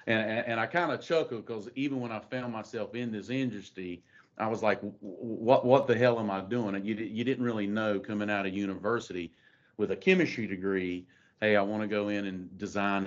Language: English